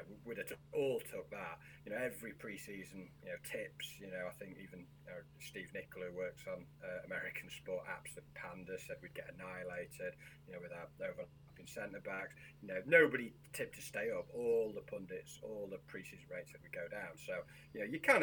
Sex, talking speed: male, 205 wpm